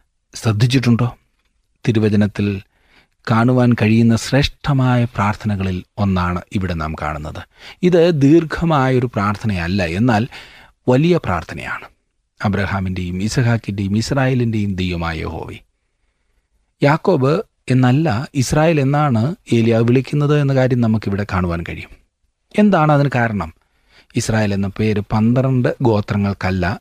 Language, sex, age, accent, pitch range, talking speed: Malayalam, male, 30-49, native, 100-125 Hz, 90 wpm